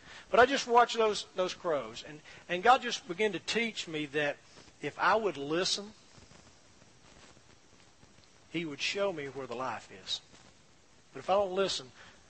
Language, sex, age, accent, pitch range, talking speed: English, male, 40-59, American, 140-195 Hz, 160 wpm